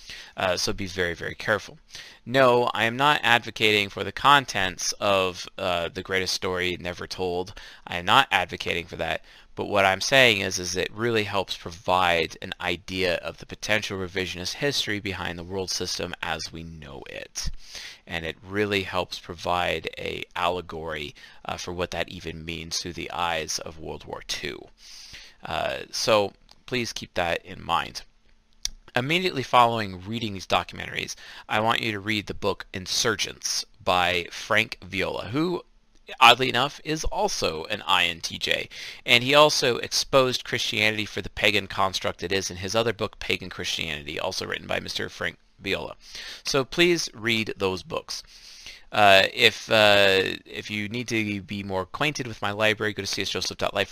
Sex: male